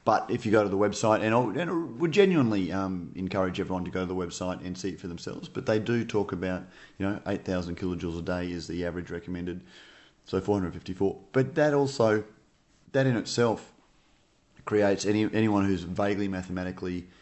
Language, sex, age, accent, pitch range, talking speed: English, male, 30-49, Australian, 95-110 Hz, 200 wpm